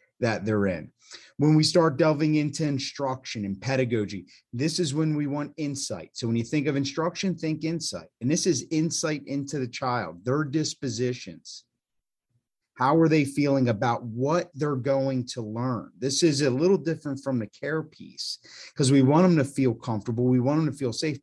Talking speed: 185 wpm